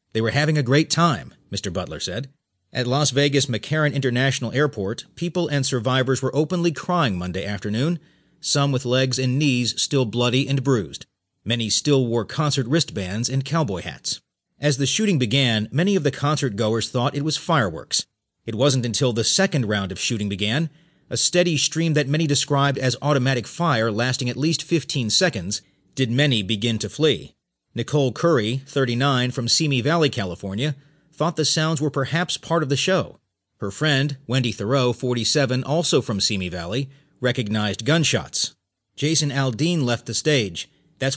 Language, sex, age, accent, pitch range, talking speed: English, male, 40-59, American, 115-150 Hz, 165 wpm